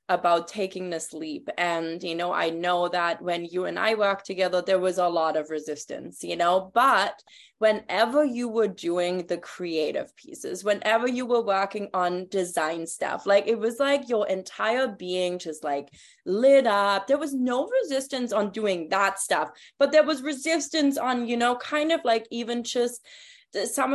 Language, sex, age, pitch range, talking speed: English, female, 20-39, 190-265 Hz, 180 wpm